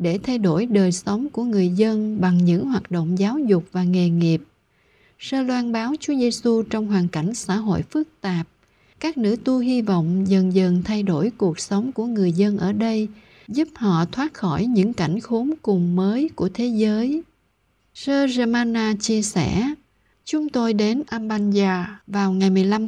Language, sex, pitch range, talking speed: Vietnamese, female, 190-240 Hz, 180 wpm